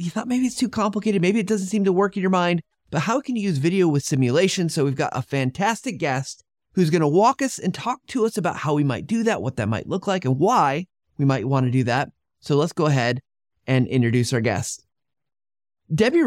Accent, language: American, English